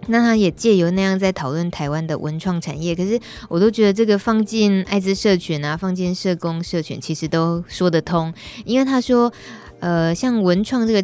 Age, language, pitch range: 20-39, Chinese, 160-200 Hz